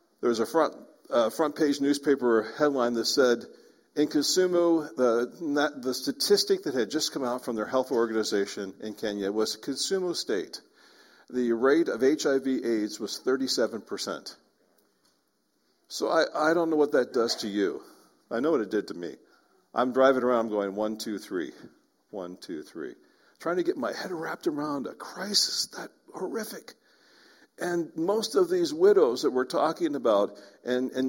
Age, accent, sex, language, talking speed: 50-69, American, male, English, 170 wpm